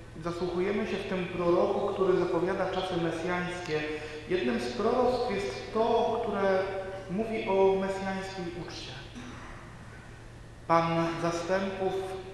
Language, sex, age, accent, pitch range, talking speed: Polish, male, 40-59, native, 130-190 Hz, 100 wpm